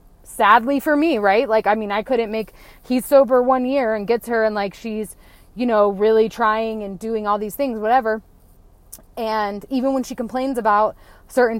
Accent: American